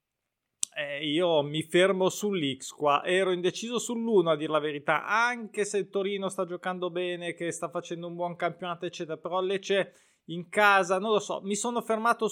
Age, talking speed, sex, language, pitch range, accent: 20-39, 175 wpm, male, Italian, 155-195 Hz, native